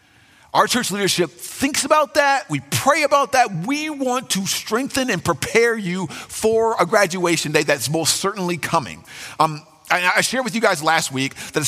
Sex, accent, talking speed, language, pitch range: male, American, 180 wpm, English, 140-210 Hz